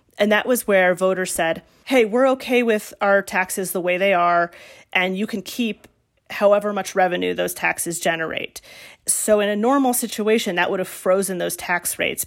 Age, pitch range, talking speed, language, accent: 30-49, 180-215 Hz, 185 wpm, English, American